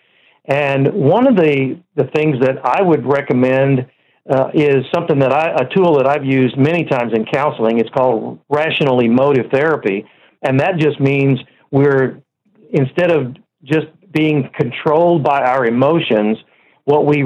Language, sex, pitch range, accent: English, male, 130-155 Hz, American